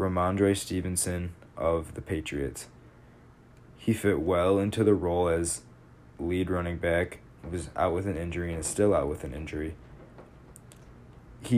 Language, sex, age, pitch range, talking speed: English, male, 20-39, 85-95 Hz, 150 wpm